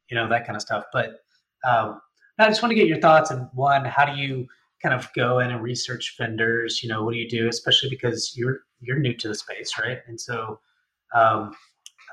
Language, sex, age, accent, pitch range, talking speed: English, male, 30-49, American, 115-145 Hz, 230 wpm